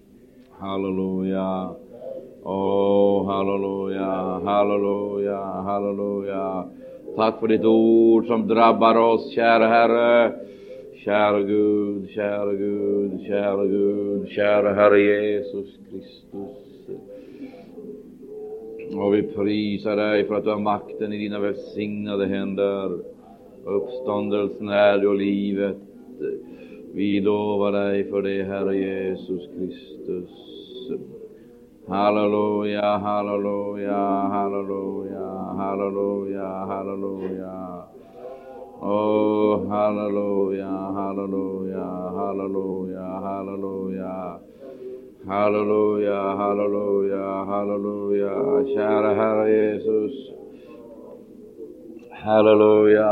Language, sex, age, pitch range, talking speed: Swedish, male, 50-69, 100-105 Hz, 75 wpm